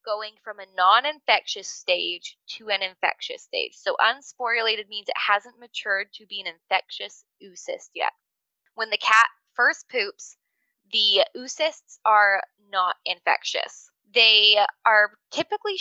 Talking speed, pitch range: 130 wpm, 205-295 Hz